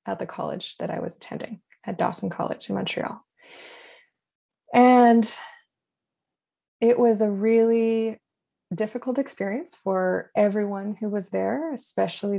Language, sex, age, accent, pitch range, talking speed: English, female, 20-39, American, 190-245 Hz, 120 wpm